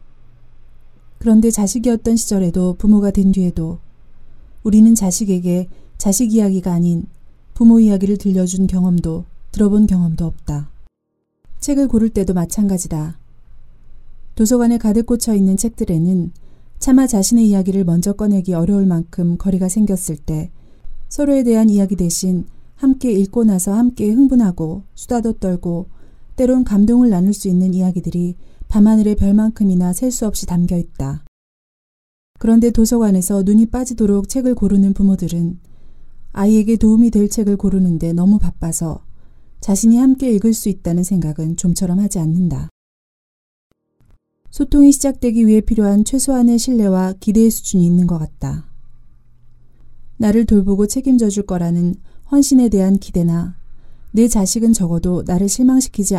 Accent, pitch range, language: native, 175-225 Hz, Korean